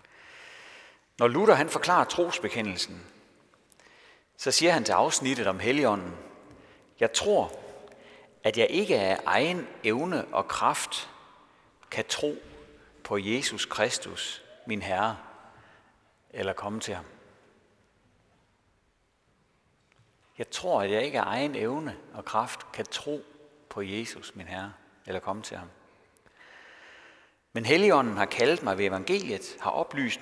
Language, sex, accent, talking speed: Danish, male, native, 125 wpm